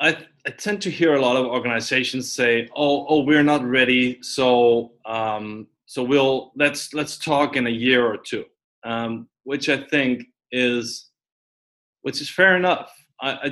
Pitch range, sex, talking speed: 120-150 Hz, male, 170 wpm